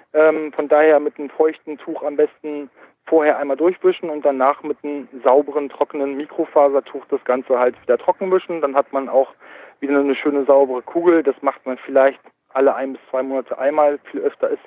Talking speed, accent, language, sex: 190 wpm, German, German, male